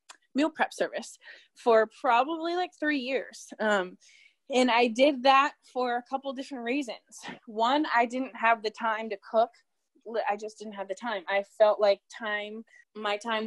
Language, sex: English, female